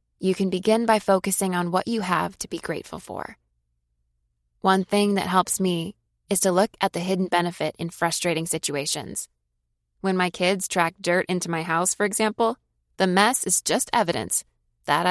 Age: 20-39